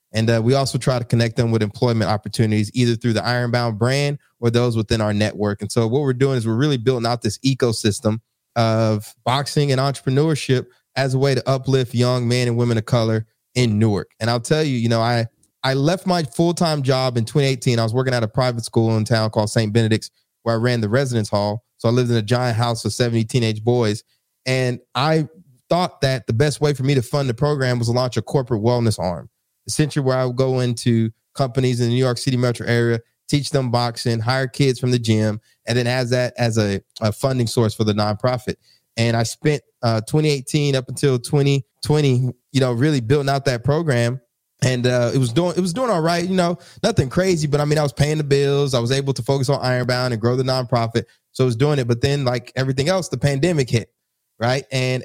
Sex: male